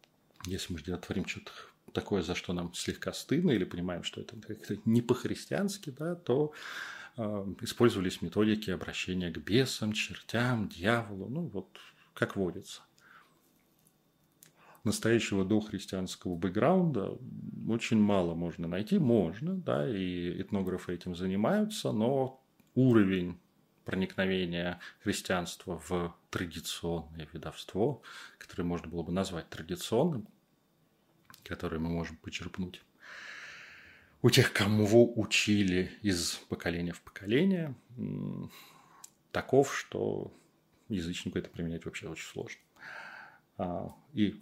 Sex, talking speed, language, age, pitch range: male, 105 wpm, Russian, 30-49, 90-115 Hz